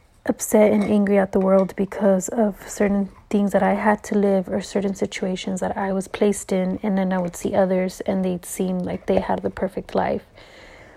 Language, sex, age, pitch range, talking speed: English, female, 30-49, 190-215 Hz, 210 wpm